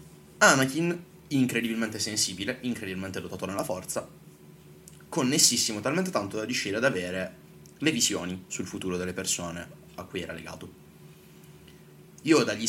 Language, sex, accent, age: Italian, male, native, 20-39